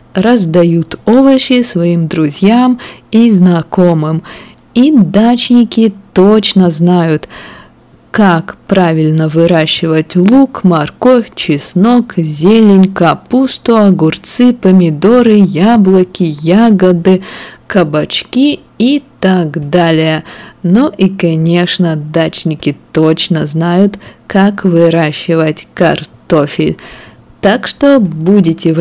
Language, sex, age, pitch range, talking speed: Russian, female, 20-39, 160-210 Hz, 80 wpm